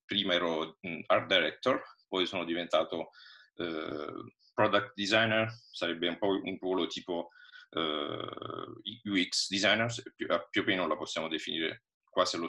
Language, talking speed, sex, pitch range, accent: Italian, 140 wpm, male, 85-135 Hz, native